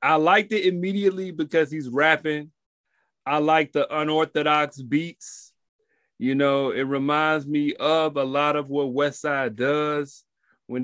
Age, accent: 30-49, American